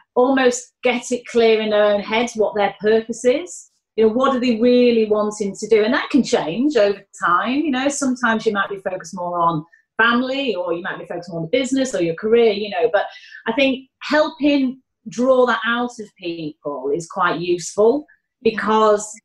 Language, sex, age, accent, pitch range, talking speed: English, female, 30-49, British, 185-245 Hz, 195 wpm